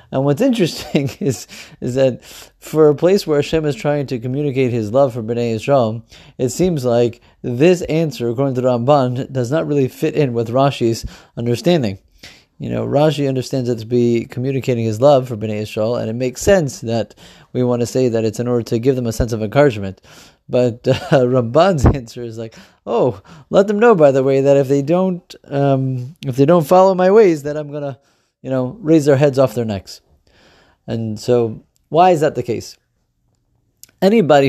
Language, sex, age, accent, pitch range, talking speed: English, male, 30-49, American, 120-145 Hz, 195 wpm